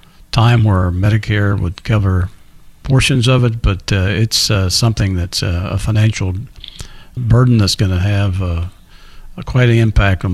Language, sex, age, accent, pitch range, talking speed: English, male, 50-69, American, 100-130 Hz, 145 wpm